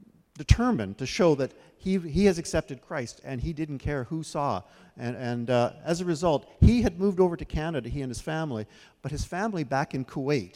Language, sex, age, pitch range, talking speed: English, male, 50-69, 130-175 Hz, 210 wpm